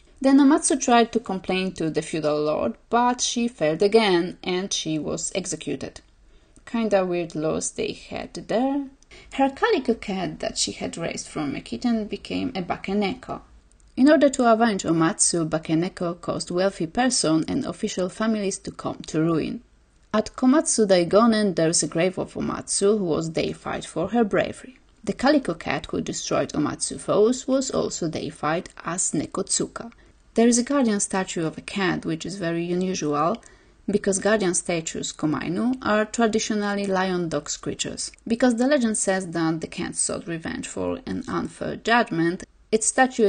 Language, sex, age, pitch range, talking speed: English, female, 30-49, 165-230 Hz, 160 wpm